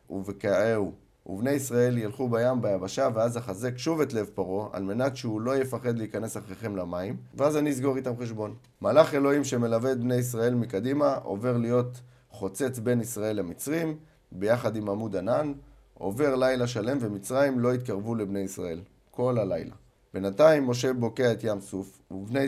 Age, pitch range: 30-49, 105-130 Hz